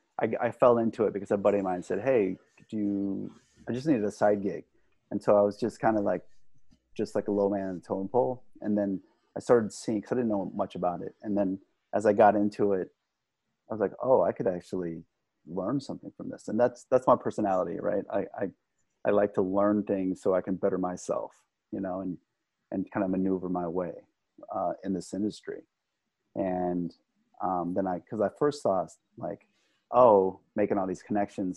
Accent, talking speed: American, 215 wpm